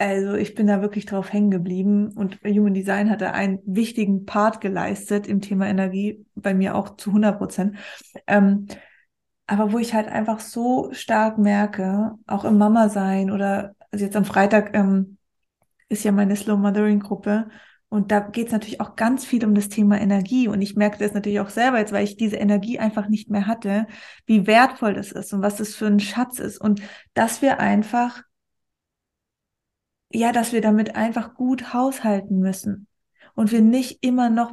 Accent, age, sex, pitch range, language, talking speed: German, 20-39, female, 205-235 Hz, German, 175 wpm